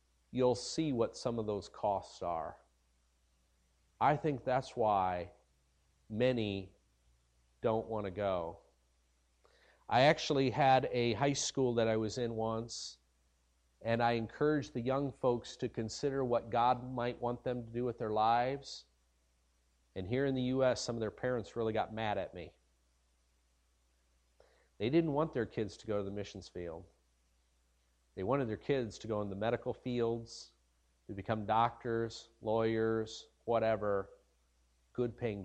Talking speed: 145 wpm